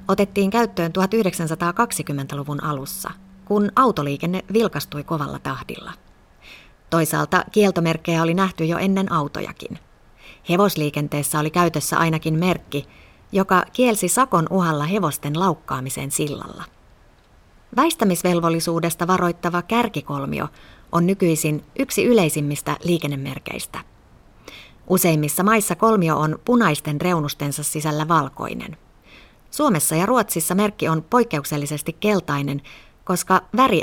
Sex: female